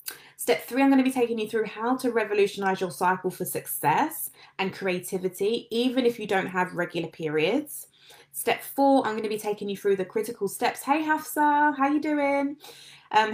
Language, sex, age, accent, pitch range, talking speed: English, female, 20-39, British, 190-250 Hz, 195 wpm